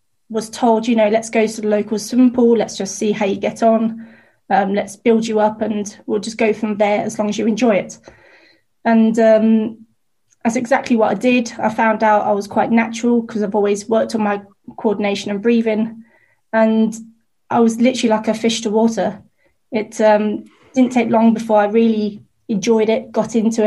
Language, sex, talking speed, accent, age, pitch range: English, female, 200 wpm, British, 20-39, 210-230 Hz